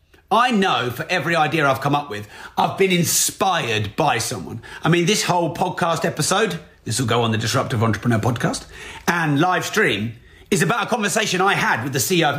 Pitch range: 125-185 Hz